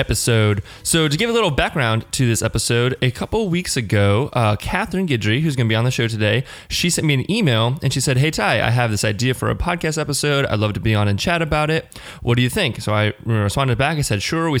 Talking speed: 265 wpm